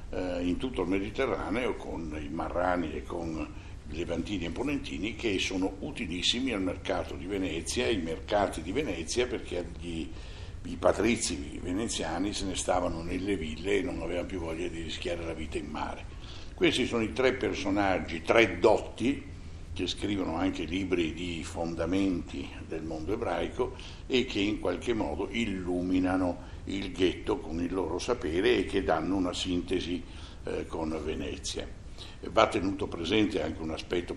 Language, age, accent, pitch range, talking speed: Italian, 60-79, native, 85-95 Hz, 155 wpm